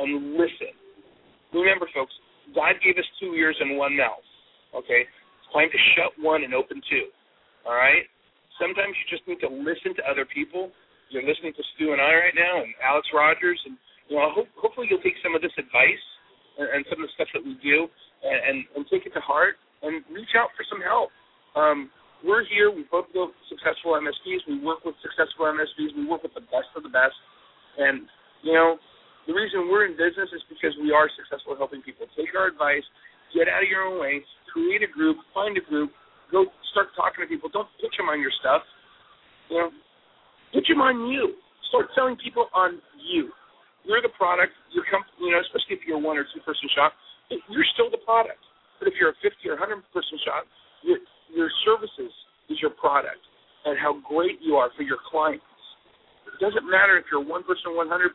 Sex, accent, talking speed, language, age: male, American, 200 wpm, English, 40-59